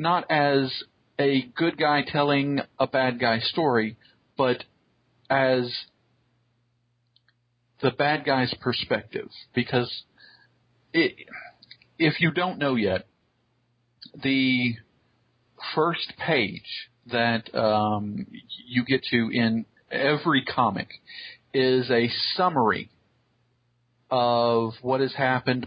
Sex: male